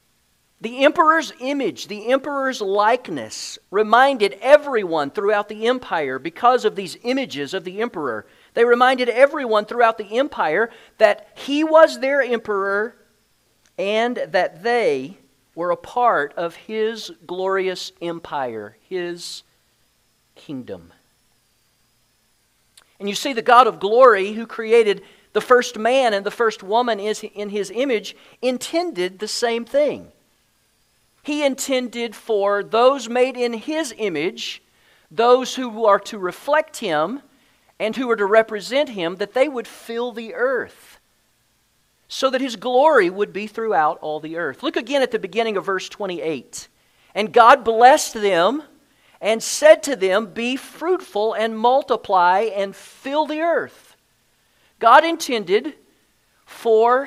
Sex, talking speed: male, 135 wpm